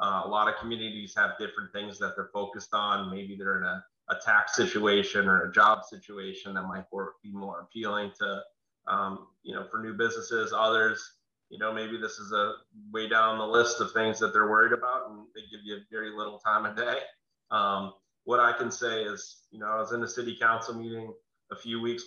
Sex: male